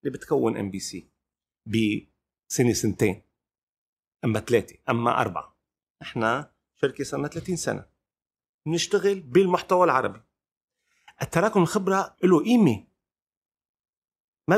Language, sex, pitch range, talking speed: Arabic, male, 115-175 Hz, 100 wpm